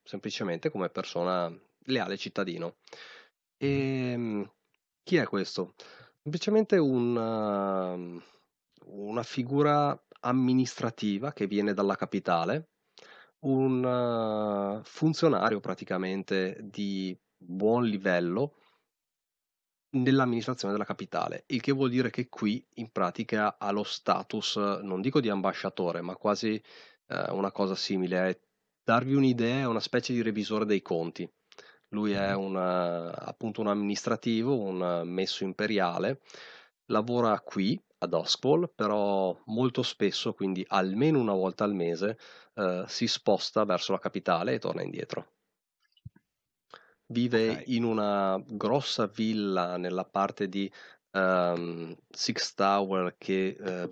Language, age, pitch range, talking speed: Italian, 30-49, 95-120 Hz, 115 wpm